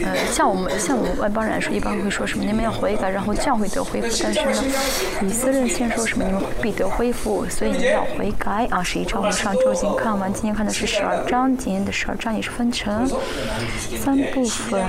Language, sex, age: Chinese, female, 20-39